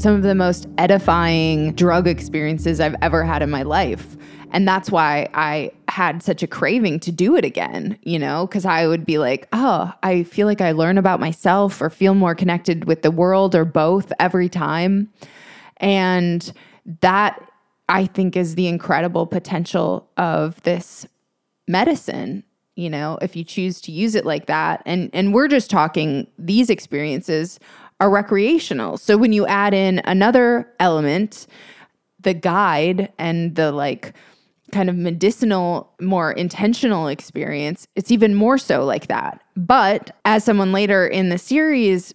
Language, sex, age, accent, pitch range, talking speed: English, female, 20-39, American, 170-205 Hz, 160 wpm